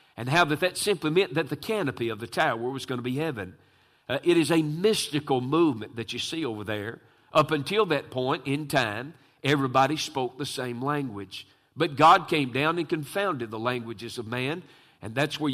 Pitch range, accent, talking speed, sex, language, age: 120-155 Hz, American, 200 wpm, male, English, 50-69